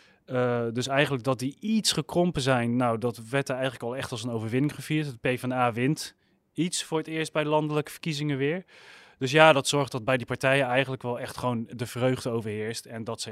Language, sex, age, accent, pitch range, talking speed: Dutch, male, 30-49, Dutch, 115-145 Hz, 215 wpm